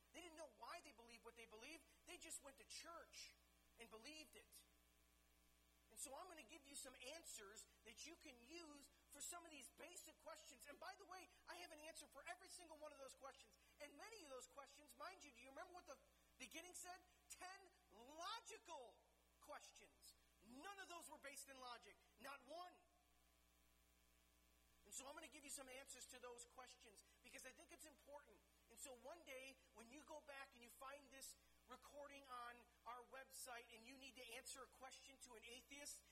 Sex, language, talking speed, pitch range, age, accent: male, English, 200 wpm, 240-300 Hz, 40-59, American